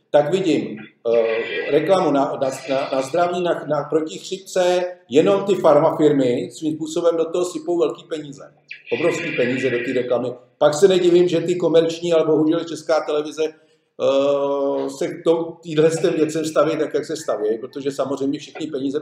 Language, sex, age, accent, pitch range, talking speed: Czech, male, 50-69, native, 155-205 Hz, 160 wpm